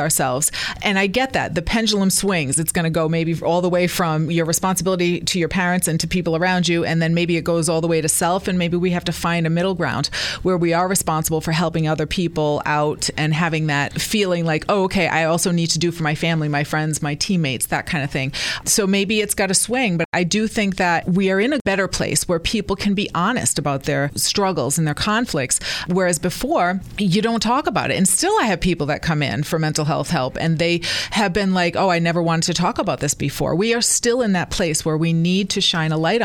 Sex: female